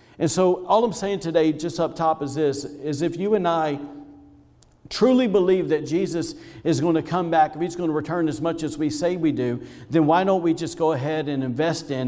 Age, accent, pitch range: 50-69, American, 140-165 Hz